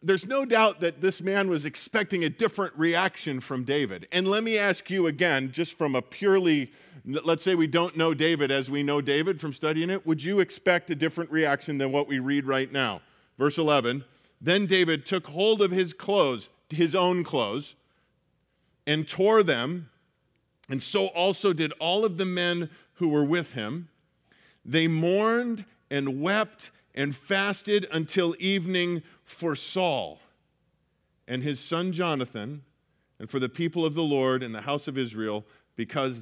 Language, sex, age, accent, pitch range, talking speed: English, male, 40-59, American, 140-190 Hz, 170 wpm